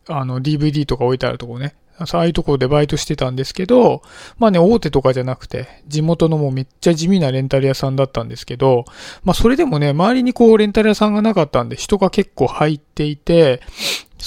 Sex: male